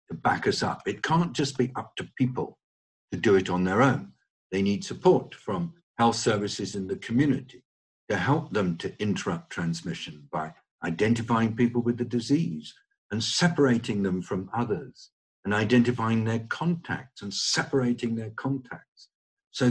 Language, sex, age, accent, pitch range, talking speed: English, male, 50-69, British, 90-130 Hz, 155 wpm